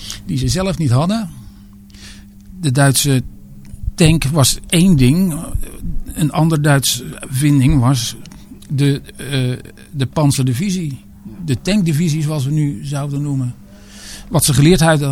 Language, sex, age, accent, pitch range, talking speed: Dutch, male, 50-69, Dutch, 135-170 Hz, 120 wpm